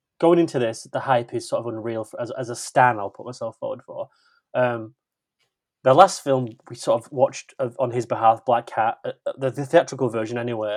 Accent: British